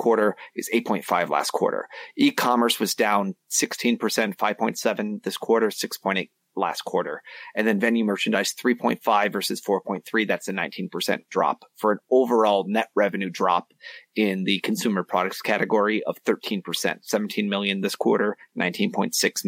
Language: English